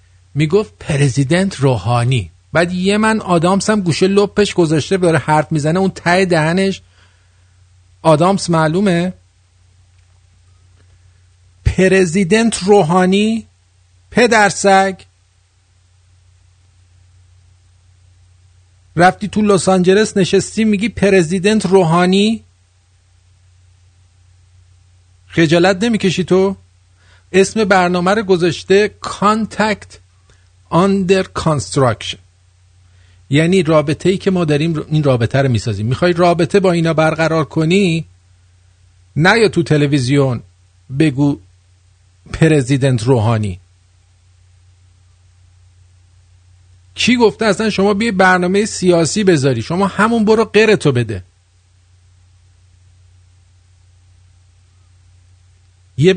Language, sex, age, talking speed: English, male, 50-69, 85 wpm